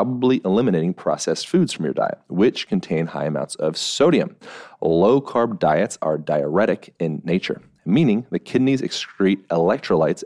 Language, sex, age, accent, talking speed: English, male, 30-49, American, 140 wpm